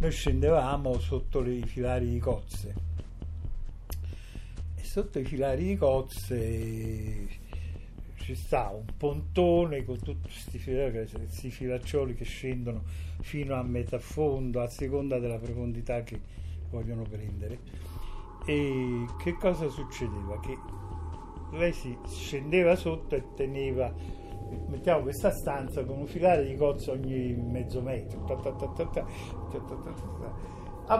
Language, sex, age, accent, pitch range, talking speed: Italian, male, 50-69, native, 95-135 Hz, 110 wpm